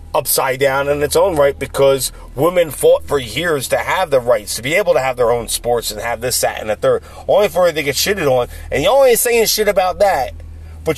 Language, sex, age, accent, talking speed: English, male, 40-59, American, 245 wpm